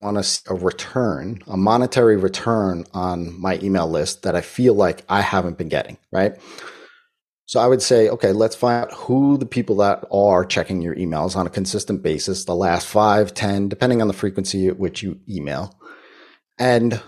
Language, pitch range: English, 95-120 Hz